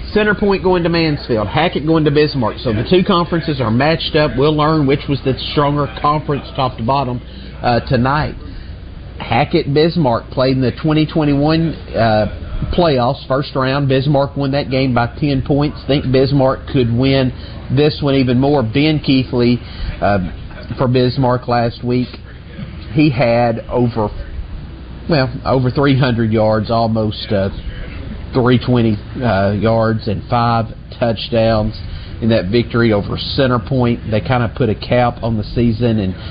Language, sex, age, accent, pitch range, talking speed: English, male, 40-59, American, 110-140 Hz, 150 wpm